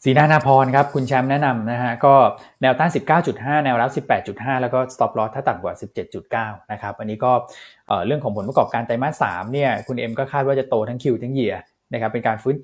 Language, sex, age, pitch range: Thai, male, 20-39, 115-145 Hz